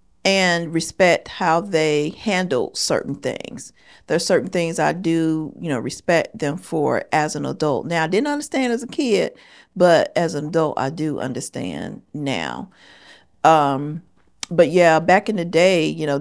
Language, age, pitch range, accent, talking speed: English, 40-59, 145-175 Hz, American, 165 wpm